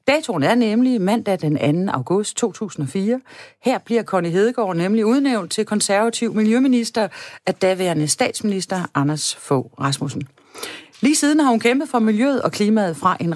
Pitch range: 145-225 Hz